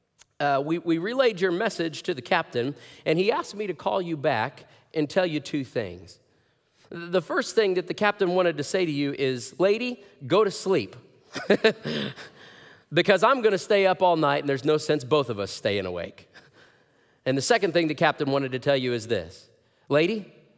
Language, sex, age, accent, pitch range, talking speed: English, male, 40-59, American, 120-185 Hz, 200 wpm